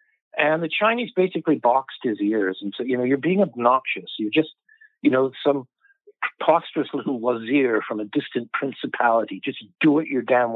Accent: American